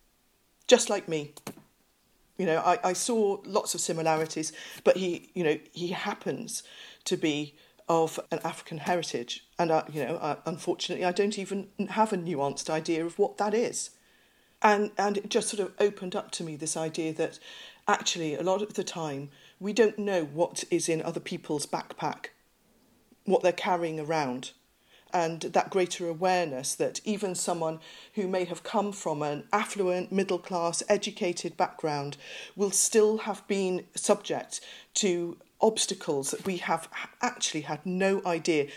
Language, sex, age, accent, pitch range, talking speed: English, female, 40-59, British, 165-205 Hz, 160 wpm